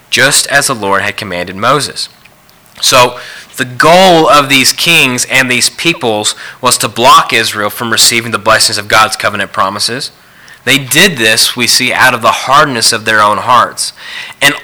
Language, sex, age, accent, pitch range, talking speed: English, male, 30-49, American, 110-150 Hz, 170 wpm